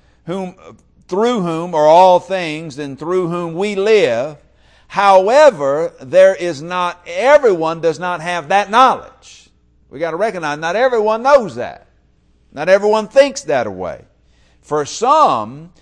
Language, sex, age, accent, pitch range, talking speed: English, male, 50-69, American, 140-195 Hz, 135 wpm